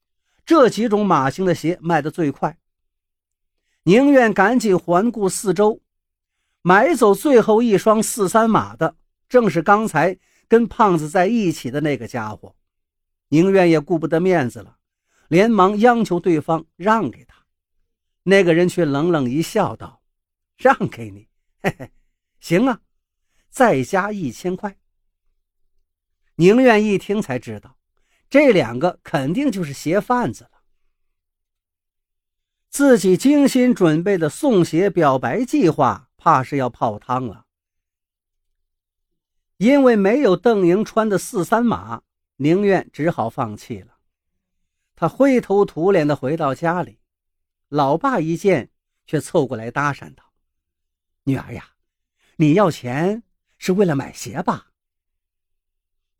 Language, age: Chinese, 50-69